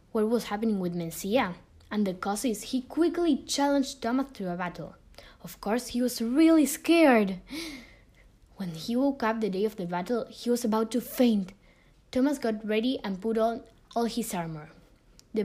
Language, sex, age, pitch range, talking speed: English, female, 10-29, 200-250 Hz, 175 wpm